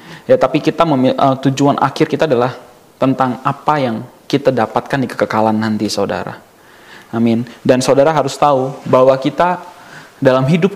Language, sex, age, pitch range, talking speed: Indonesian, male, 20-39, 120-150 Hz, 150 wpm